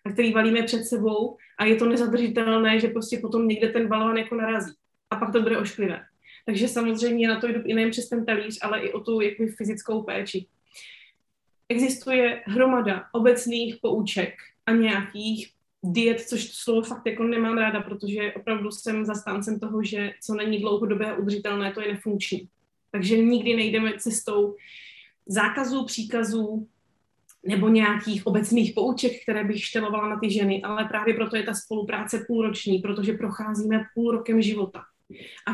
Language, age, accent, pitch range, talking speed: Czech, 20-39, native, 210-235 Hz, 160 wpm